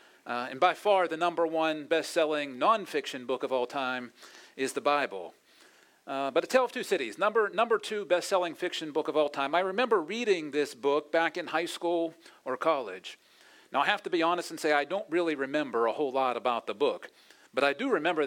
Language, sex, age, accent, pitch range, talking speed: English, male, 40-59, American, 145-190 Hz, 215 wpm